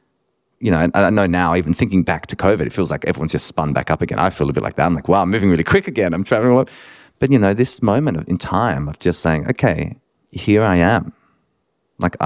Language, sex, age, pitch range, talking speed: English, male, 30-49, 75-95 Hz, 250 wpm